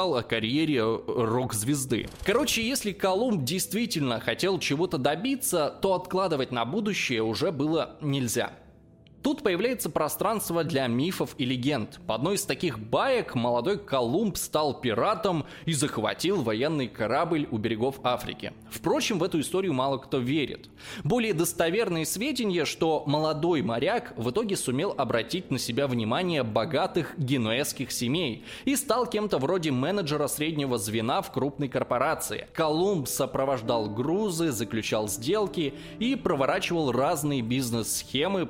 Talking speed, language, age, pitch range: 130 wpm, Russian, 20-39, 125-185 Hz